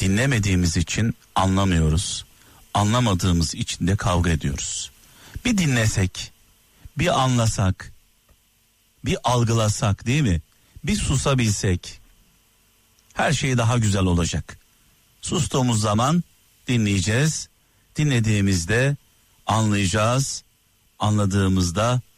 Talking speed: 80 wpm